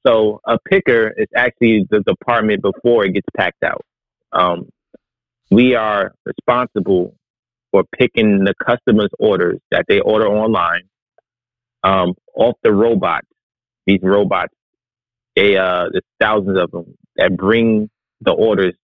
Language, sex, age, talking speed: English, male, 30-49, 130 wpm